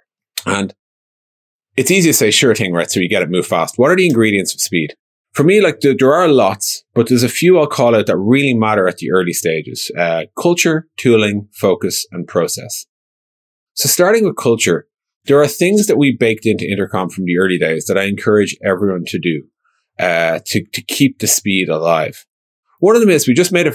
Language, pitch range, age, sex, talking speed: English, 95-125 Hz, 30-49, male, 210 wpm